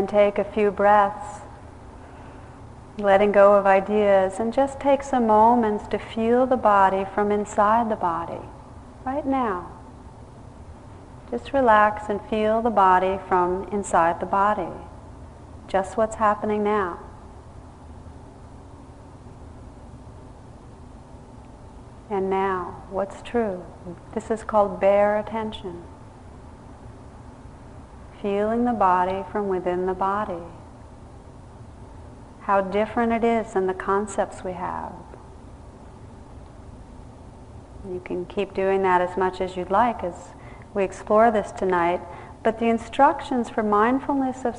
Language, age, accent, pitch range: English, 40-59, American, 185-220 Hz